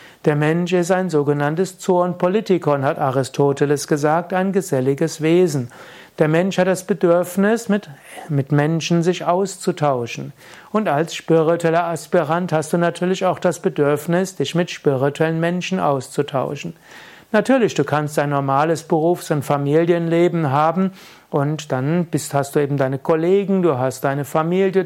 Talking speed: 140 wpm